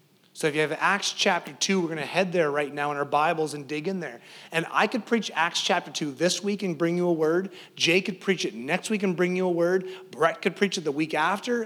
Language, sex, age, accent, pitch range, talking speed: English, male, 30-49, American, 160-205 Hz, 275 wpm